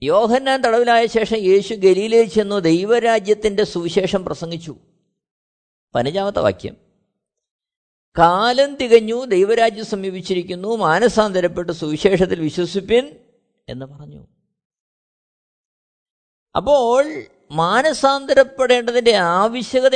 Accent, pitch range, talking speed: native, 185-245 Hz, 70 wpm